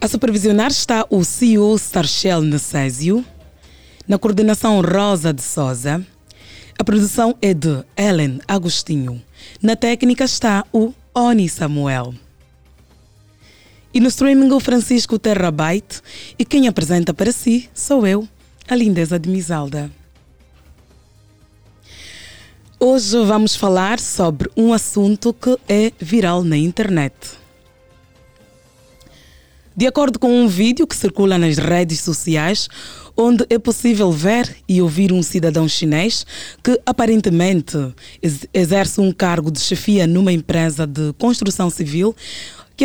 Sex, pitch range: female, 150-225 Hz